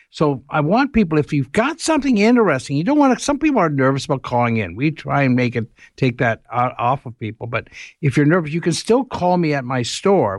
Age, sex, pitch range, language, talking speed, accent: 60-79, male, 135-195 Hz, English, 245 wpm, American